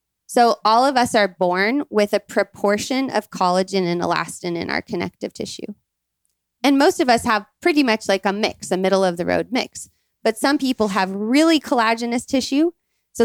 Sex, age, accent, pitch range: female, 20-39, American, 185-235 Hz